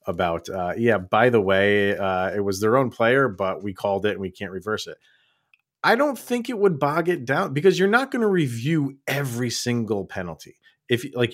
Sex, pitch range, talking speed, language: male, 115-175 Hz, 210 wpm, English